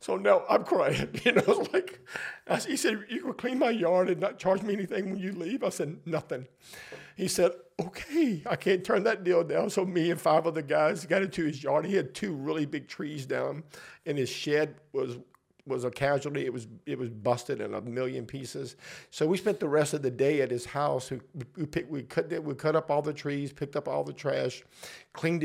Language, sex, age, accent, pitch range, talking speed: English, male, 50-69, American, 125-170 Hz, 230 wpm